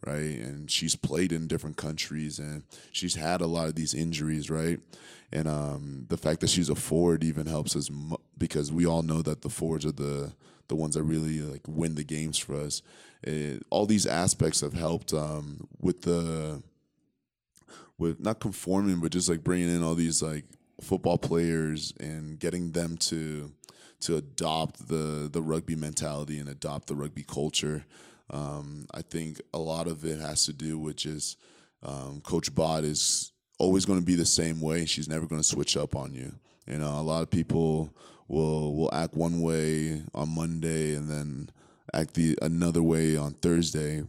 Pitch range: 75-80 Hz